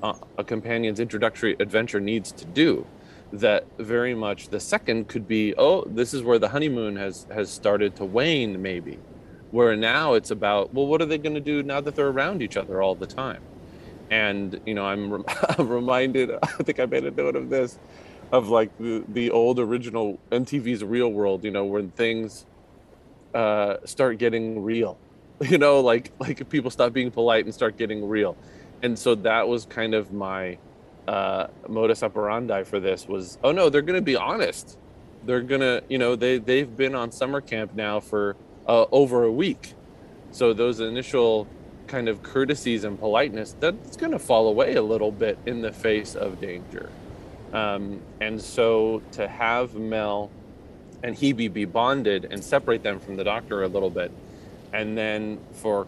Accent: American